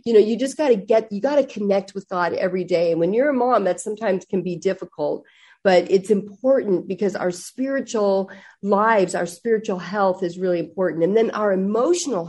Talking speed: 205 wpm